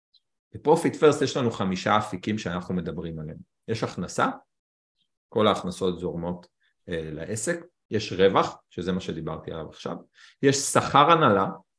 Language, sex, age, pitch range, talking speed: Hebrew, male, 40-59, 100-150 Hz, 130 wpm